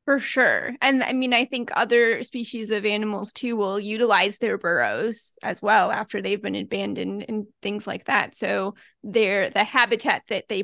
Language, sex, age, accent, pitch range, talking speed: English, female, 20-39, American, 210-250 Hz, 180 wpm